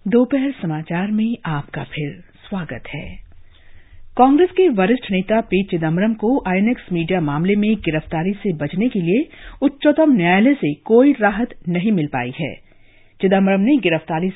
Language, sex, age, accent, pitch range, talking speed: Hindi, female, 50-69, native, 165-240 Hz, 140 wpm